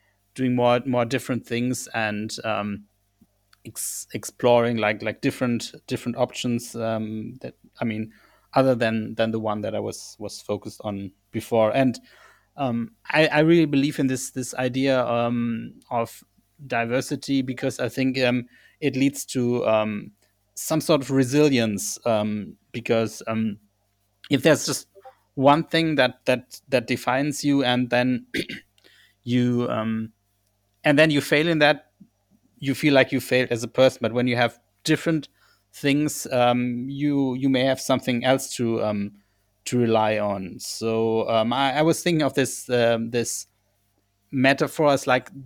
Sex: male